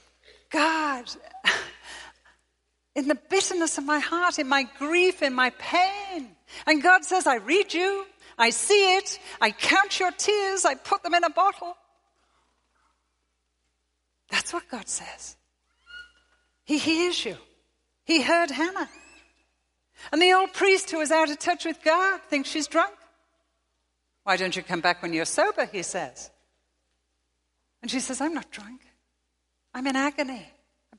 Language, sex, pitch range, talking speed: English, female, 200-335 Hz, 145 wpm